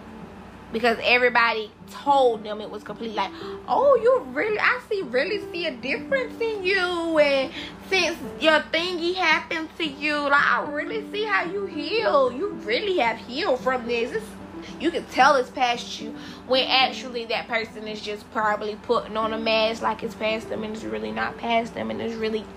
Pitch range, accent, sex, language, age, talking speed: 220-270 Hz, American, female, English, 10-29, 185 wpm